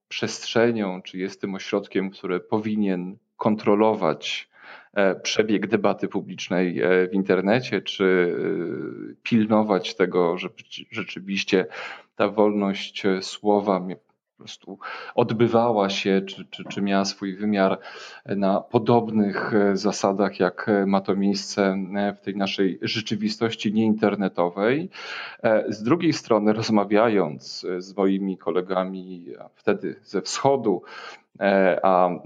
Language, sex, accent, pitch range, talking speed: Polish, male, native, 95-105 Hz, 100 wpm